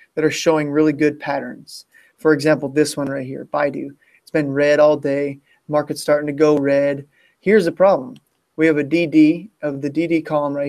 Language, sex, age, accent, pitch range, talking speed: English, male, 20-39, American, 145-170 Hz, 195 wpm